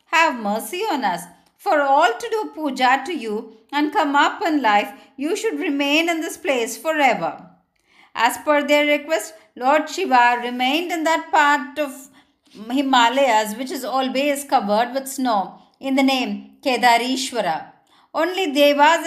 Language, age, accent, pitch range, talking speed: Tamil, 50-69, native, 245-305 Hz, 150 wpm